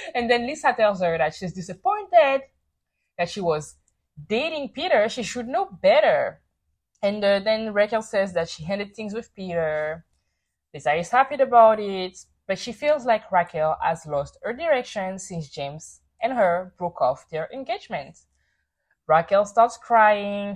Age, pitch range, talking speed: 20-39, 170-250 Hz, 155 wpm